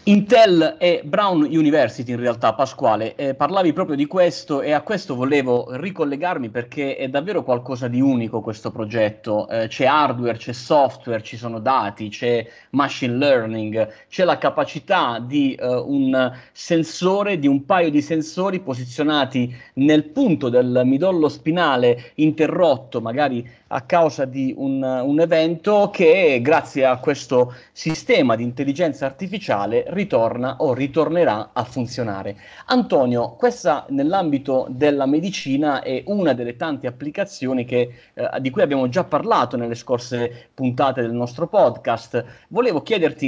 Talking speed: 135 wpm